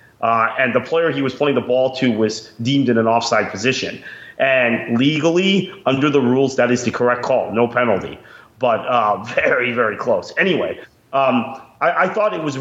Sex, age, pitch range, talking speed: male, 40-59, 110-140 Hz, 190 wpm